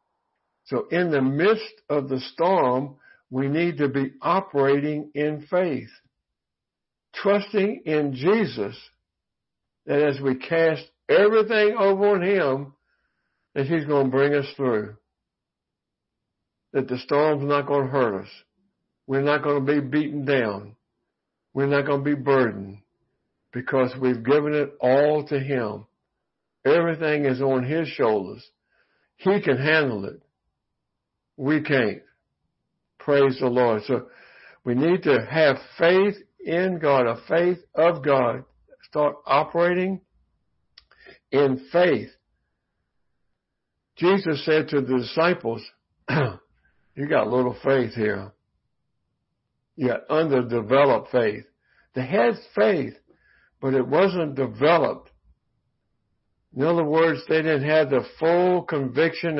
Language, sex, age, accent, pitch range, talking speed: English, male, 60-79, American, 130-165 Hz, 120 wpm